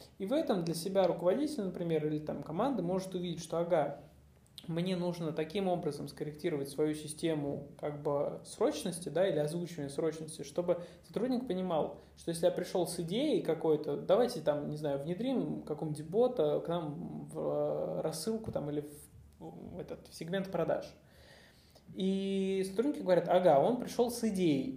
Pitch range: 150-200 Hz